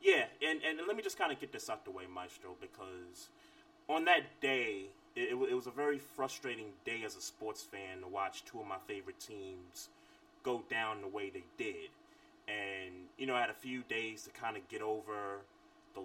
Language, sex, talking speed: English, male, 210 wpm